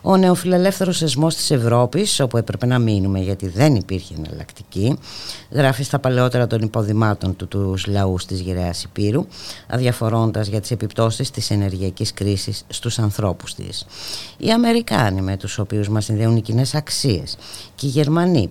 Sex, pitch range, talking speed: female, 95-130 Hz, 150 wpm